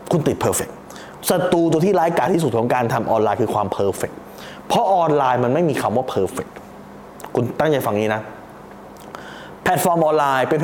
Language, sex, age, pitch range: Thai, male, 20-39, 135-220 Hz